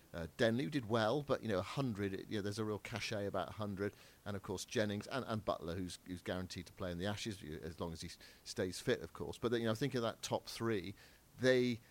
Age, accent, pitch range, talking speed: 50-69, British, 90-115 Hz, 265 wpm